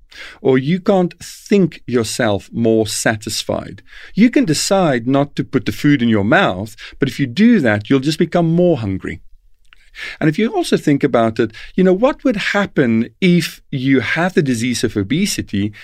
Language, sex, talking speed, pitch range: English, male, 180 wpm, 110-165 Hz